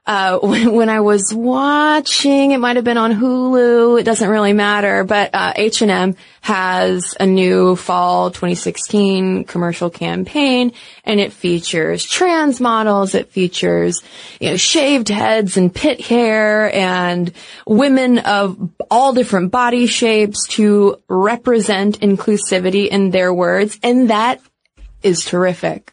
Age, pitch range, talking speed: 20-39, 185-230 Hz, 130 wpm